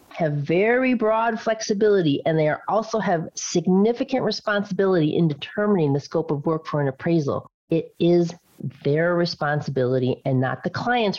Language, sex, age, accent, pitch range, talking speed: English, female, 40-59, American, 155-230 Hz, 145 wpm